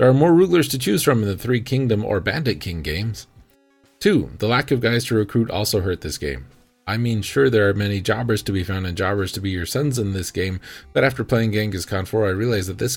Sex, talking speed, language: male, 255 wpm, English